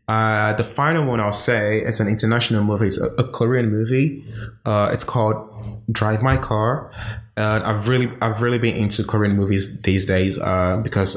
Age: 20-39